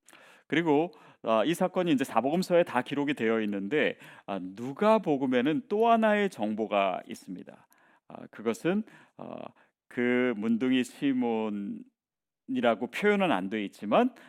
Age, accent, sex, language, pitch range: 40-59, native, male, Korean, 115-185 Hz